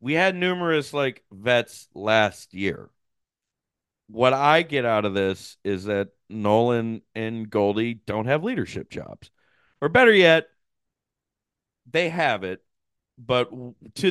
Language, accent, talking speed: English, American, 130 wpm